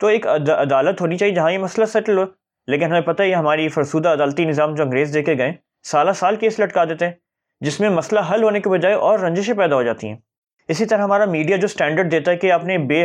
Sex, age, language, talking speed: male, 20-39, Urdu, 250 wpm